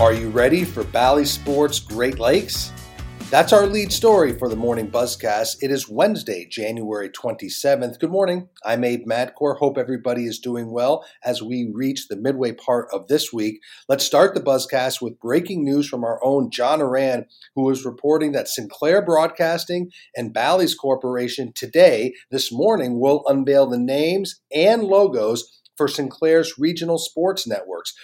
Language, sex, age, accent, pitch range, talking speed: English, male, 40-59, American, 125-160 Hz, 165 wpm